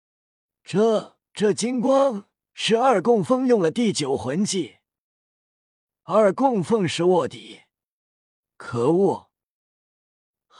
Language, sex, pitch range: Chinese, male, 160-225 Hz